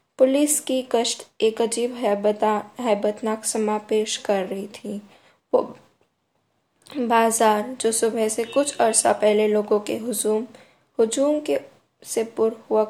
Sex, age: female, 10-29